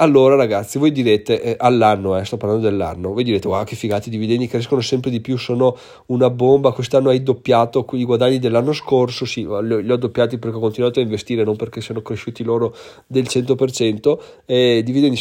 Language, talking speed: Italian, 195 wpm